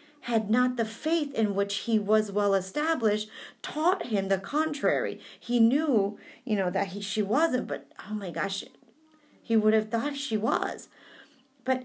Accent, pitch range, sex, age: American, 200-305 Hz, female, 40-59